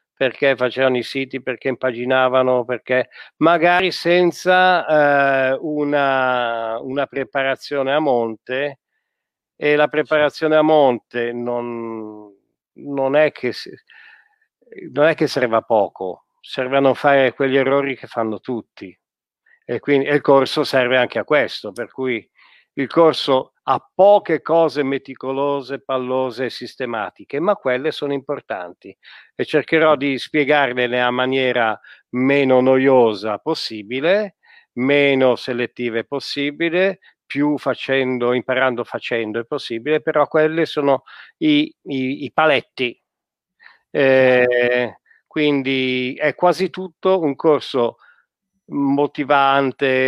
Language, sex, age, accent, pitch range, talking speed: Italian, male, 50-69, native, 125-150 Hz, 115 wpm